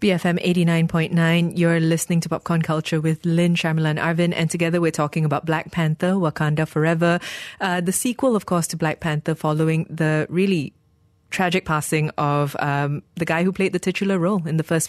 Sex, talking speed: female, 185 wpm